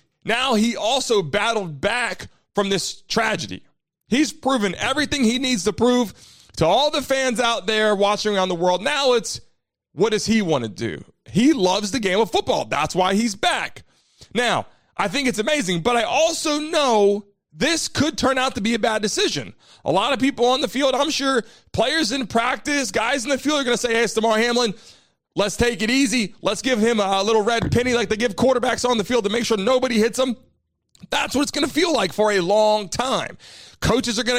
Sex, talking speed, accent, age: male, 215 wpm, American, 30-49